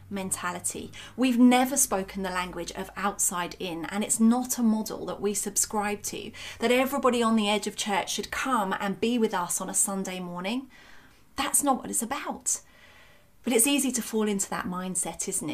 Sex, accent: female, British